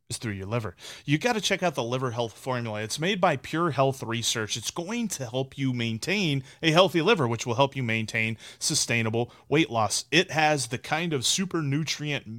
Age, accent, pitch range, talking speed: 30-49, American, 120-155 Hz, 205 wpm